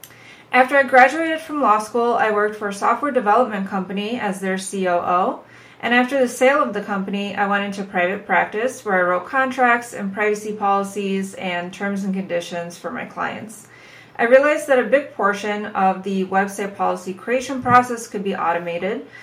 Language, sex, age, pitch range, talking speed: English, female, 30-49, 190-240 Hz, 180 wpm